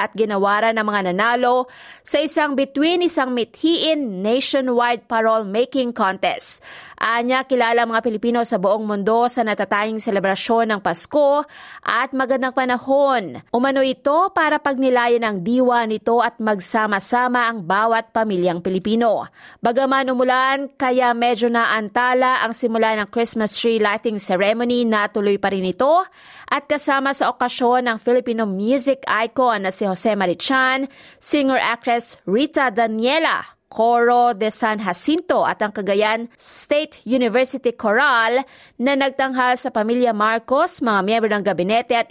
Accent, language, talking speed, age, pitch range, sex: native, Filipino, 130 wpm, 20-39, 215-265 Hz, female